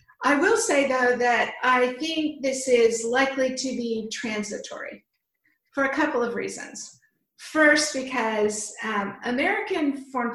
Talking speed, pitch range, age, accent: 135 wpm, 225-295 Hz, 50-69, American